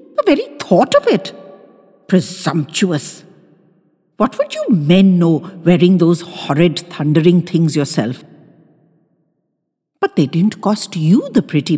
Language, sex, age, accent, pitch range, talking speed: English, female, 60-79, Indian, 160-230 Hz, 115 wpm